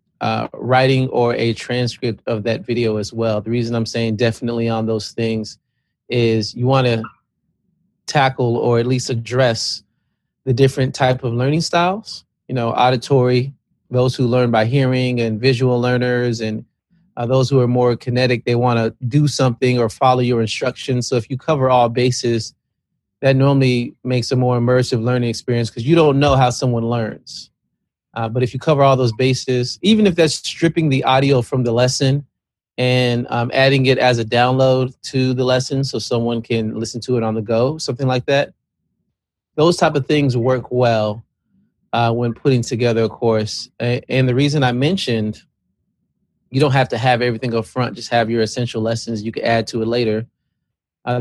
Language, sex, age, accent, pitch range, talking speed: English, male, 30-49, American, 115-135 Hz, 185 wpm